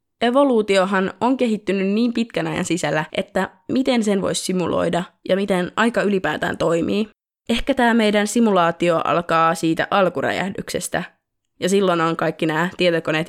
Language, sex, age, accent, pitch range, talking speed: Finnish, female, 20-39, native, 170-210 Hz, 135 wpm